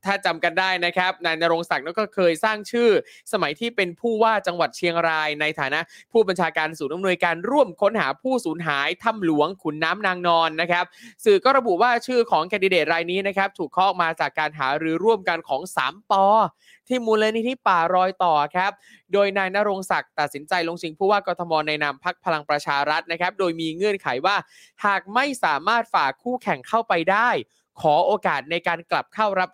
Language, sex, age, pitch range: Thai, male, 20-39, 165-205 Hz